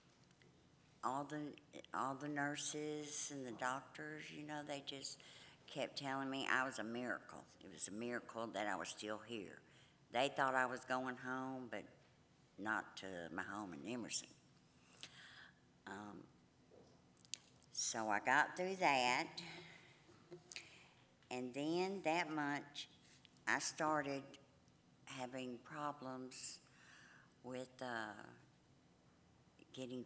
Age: 60-79